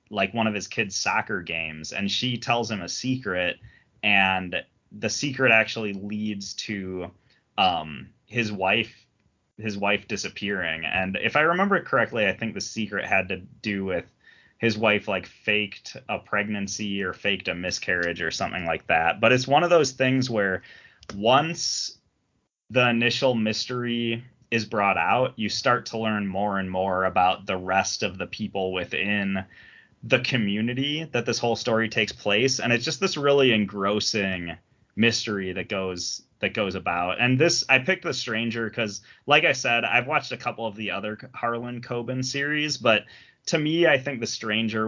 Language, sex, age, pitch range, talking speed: English, male, 20-39, 100-125 Hz, 170 wpm